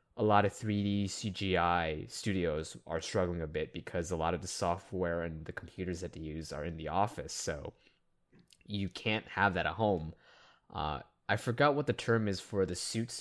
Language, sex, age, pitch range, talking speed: English, male, 20-39, 85-105 Hz, 200 wpm